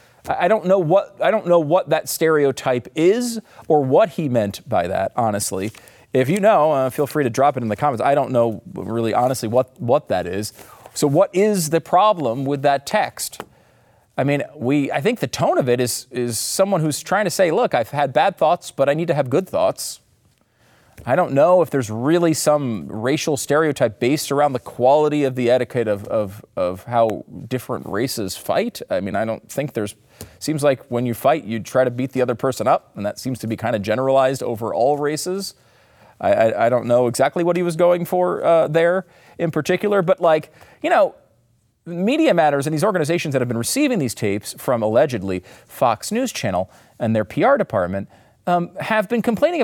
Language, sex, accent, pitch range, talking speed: English, male, American, 120-180 Hz, 205 wpm